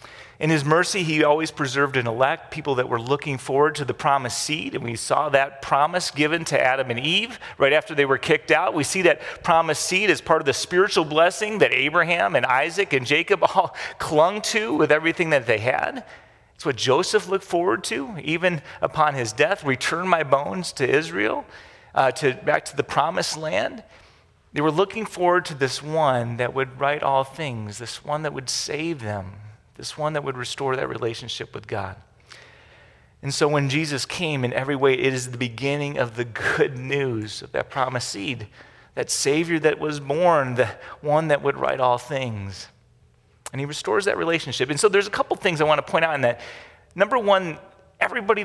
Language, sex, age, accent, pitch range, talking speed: English, male, 40-59, American, 130-165 Hz, 195 wpm